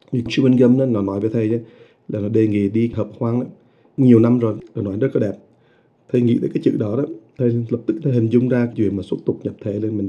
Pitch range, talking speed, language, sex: 115-135 Hz, 260 wpm, English, male